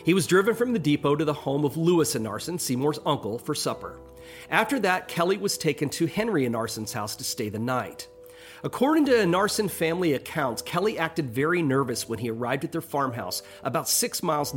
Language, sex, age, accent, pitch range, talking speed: English, male, 40-59, American, 125-180 Hz, 195 wpm